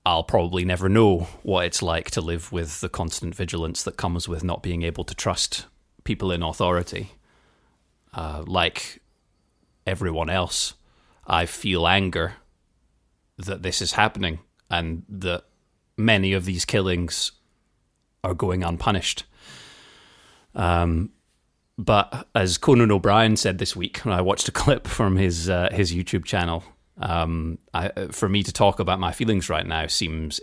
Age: 30-49